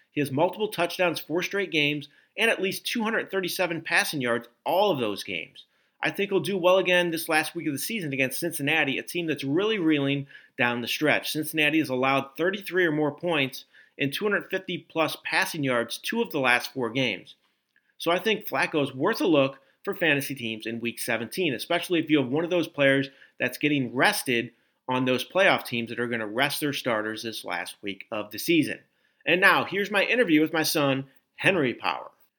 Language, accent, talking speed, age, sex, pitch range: English, American, 200 wpm, 40-59, male, 125-170 Hz